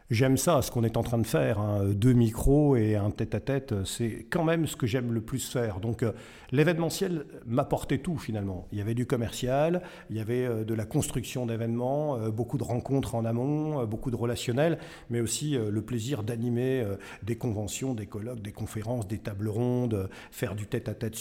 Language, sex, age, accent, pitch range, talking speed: French, male, 50-69, French, 110-135 Hz, 185 wpm